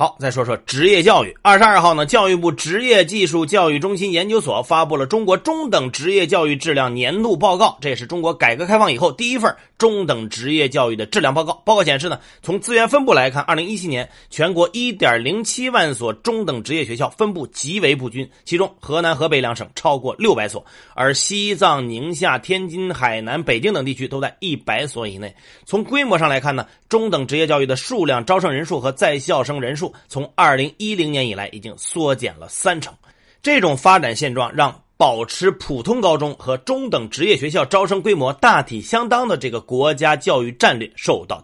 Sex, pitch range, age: male, 130-195 Hz, 30-49